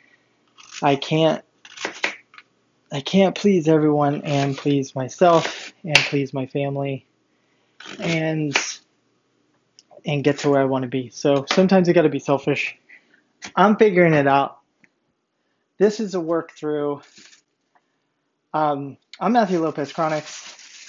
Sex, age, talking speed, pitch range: male, 20-39, 120 wpm, 145-190 Hz